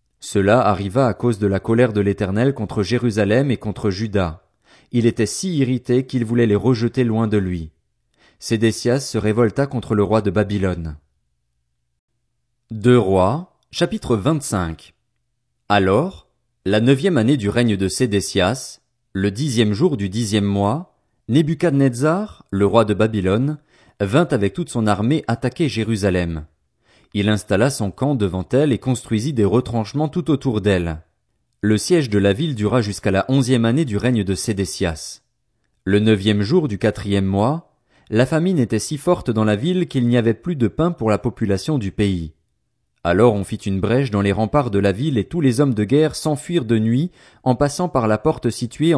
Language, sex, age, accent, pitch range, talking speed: French, male, 30-49, French, 100-130 Hz, 175 wpm